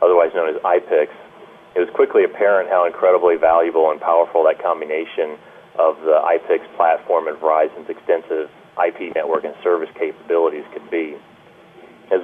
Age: 30-49